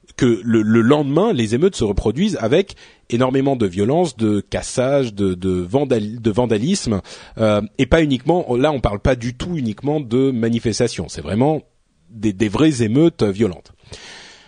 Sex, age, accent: male, 30-49, French